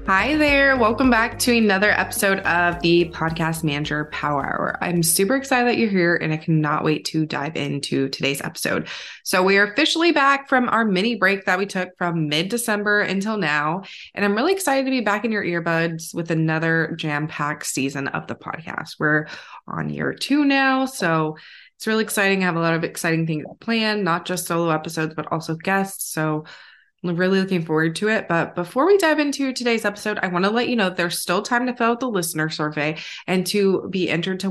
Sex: female